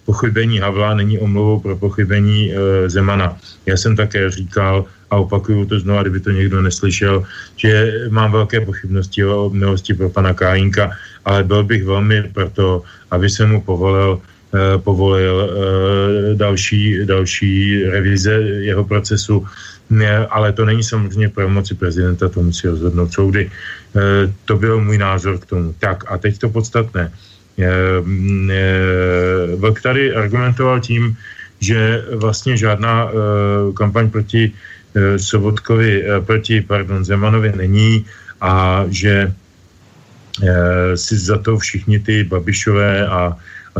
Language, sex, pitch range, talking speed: Slovak, male, 95-110 Hz, 130 wpm